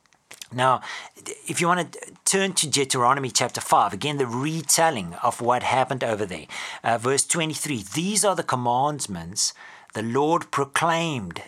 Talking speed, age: 145 wpm, 40-59